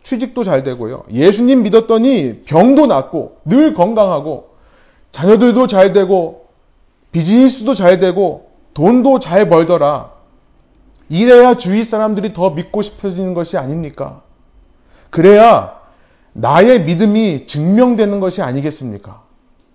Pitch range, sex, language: 160-240 Hz, male, Korean